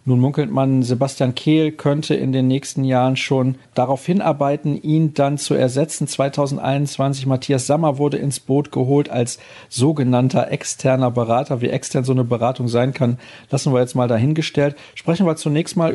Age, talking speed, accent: 40-59, 165 wpm, German